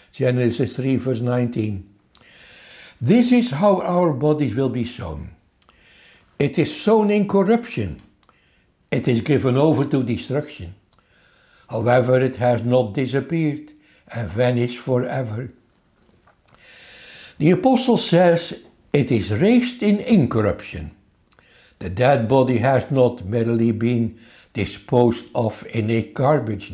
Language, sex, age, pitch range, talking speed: English, male, 60-79, 115-170 Hz, 110 wpm